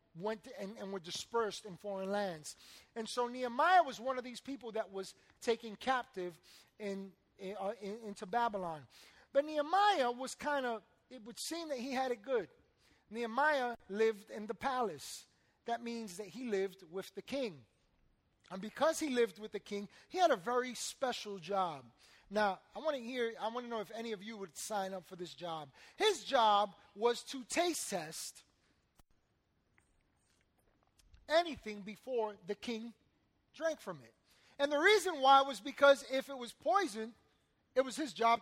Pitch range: 190-255 Hz